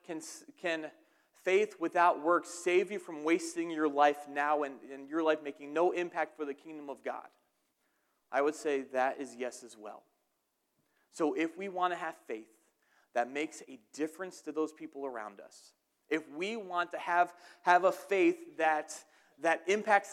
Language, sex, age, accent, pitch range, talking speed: English, male, 30-49, American, 155-200 Hz, 170 wpm